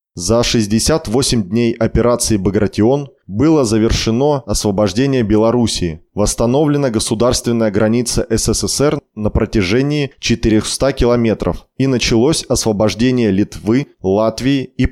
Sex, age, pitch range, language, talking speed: male, 20-39, 105-130 Hz, Russian, 95 wpm